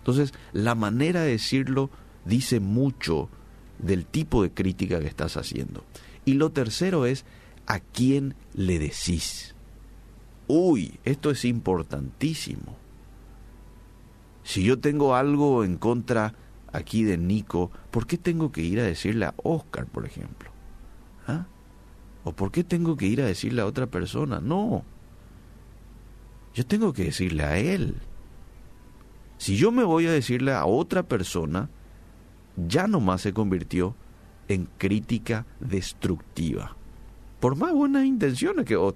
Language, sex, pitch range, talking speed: Spanish, male, 95-135 Hz, 130 wpm